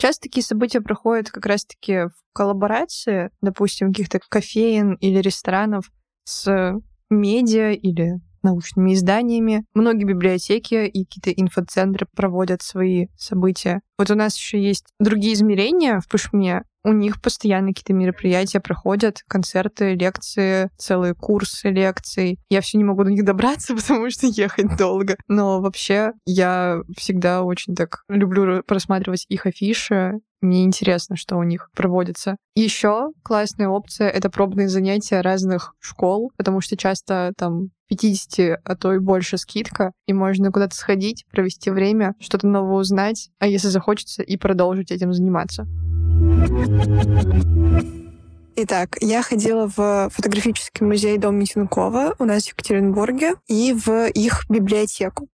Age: 20-39